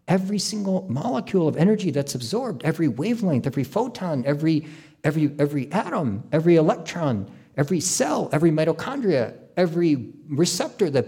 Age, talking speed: 50-69, 130 wpm